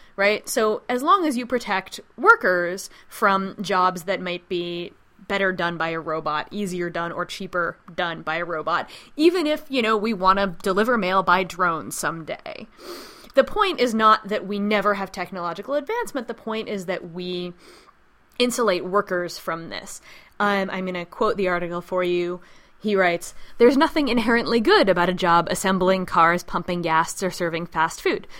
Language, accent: English, American